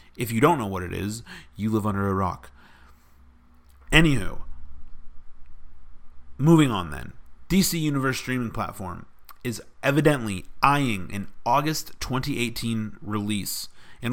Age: 40-59